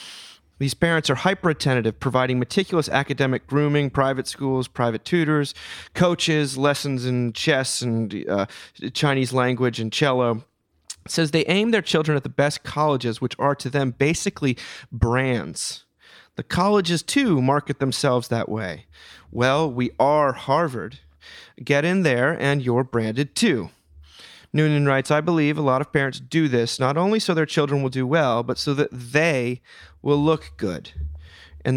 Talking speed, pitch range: 155 wpm, 115-150 Hz